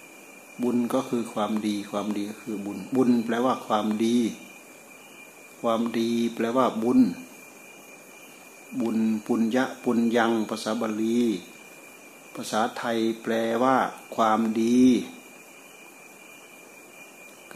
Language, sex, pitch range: Thai, male, 105-120 Hz